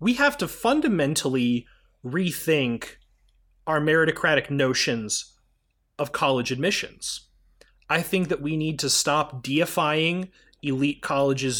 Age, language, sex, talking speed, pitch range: 30-49, English, male, 110 wpm, 130-180 Hz